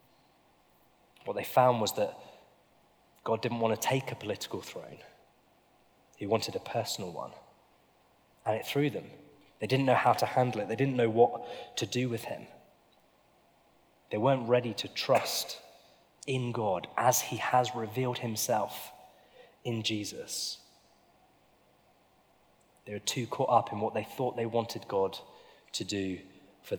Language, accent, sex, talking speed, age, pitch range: English, British, male, 150 wpm, 20-39, 105-125 Hz